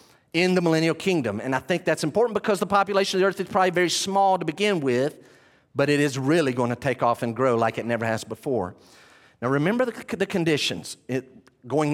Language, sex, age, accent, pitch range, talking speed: English, male, 40-59, American, 155-205 Hz, 215 wpm